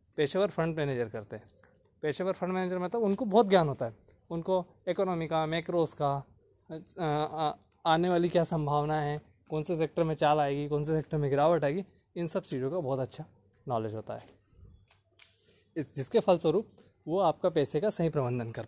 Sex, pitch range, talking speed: male, 120-180 Hz, 180 wpm